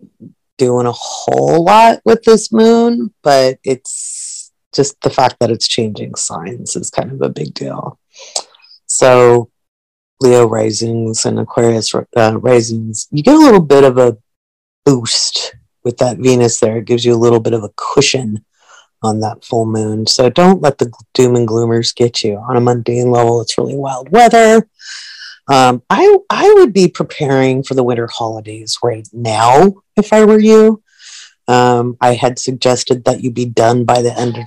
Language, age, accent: English, 30-49, American